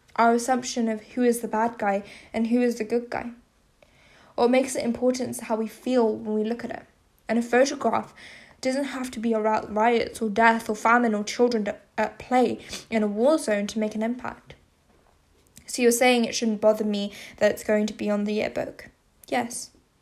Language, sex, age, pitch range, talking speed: English, female, 10-29, 220-245 Hz, 205 wpm